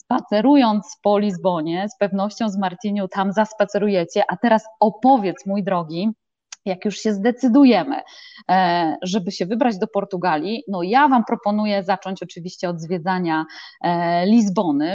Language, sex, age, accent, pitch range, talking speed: Polish, female, 20-39, native, 185-225 Hz, 130 wpm